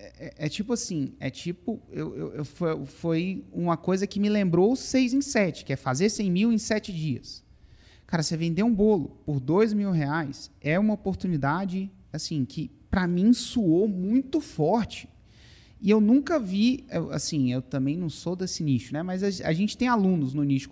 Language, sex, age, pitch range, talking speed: Portuguese, male, 30-49, 145-235 Hz, 190 wpm